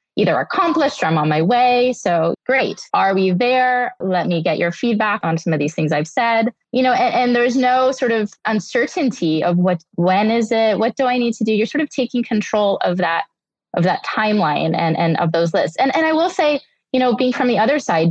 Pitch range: 170-250 Hz